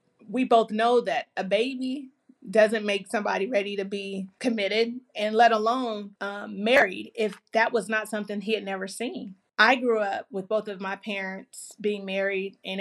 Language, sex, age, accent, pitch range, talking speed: English, female, 30-49, American, 200-230 Hz, 180 wpm